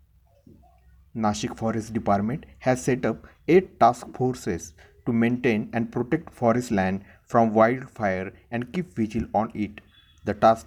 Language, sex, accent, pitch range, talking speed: Marathi, male, native, 95-120 Hz, 135 wpm